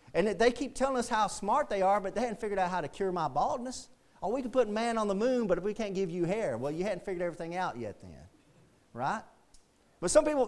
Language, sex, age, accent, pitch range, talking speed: English, male, 40-59, American, 170-235 Hz, 275 wpm